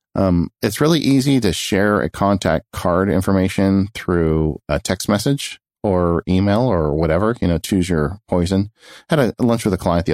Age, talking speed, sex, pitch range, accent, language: 40-59, 185 wpm, male, 80-105 Hz, American, English